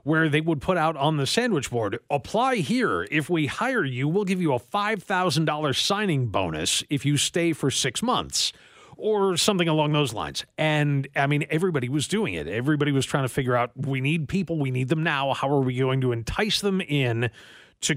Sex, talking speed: male, 205 wpm